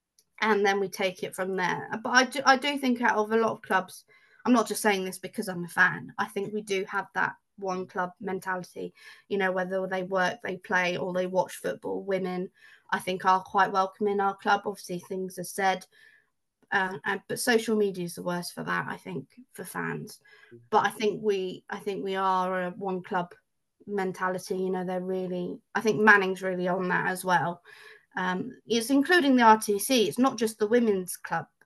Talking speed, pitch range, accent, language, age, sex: 210 wpm, 185-215 Hz, British, English, 20-39, female